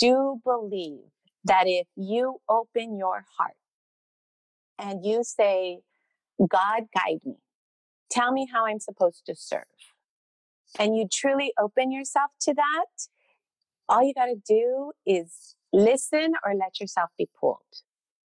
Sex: female